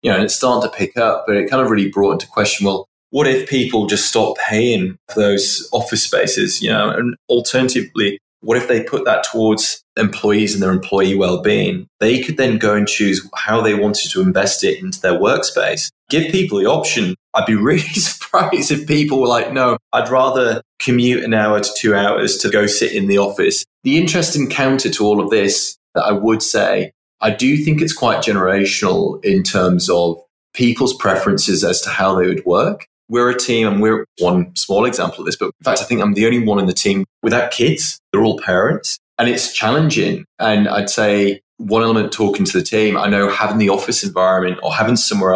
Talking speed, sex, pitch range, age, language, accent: 215 wpm, male, 100-135 Hz, 20-39, English, British